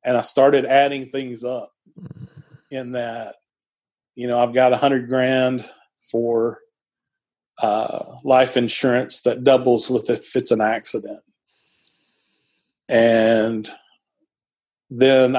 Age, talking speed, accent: 40-59, 110 wpm, American